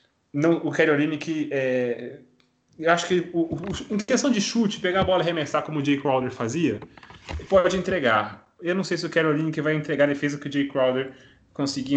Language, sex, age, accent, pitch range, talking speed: Portuguese, male, 20-39, Brazilian, 120-160 Hz, 210 wpm